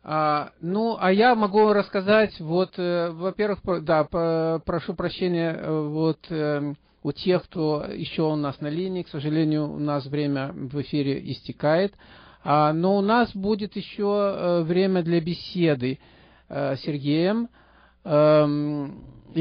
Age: 50-69